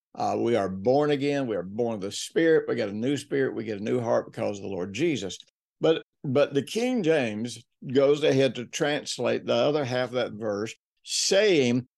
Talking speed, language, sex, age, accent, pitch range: 210 wpm, English, male, 60-79, American, 115-145 Hz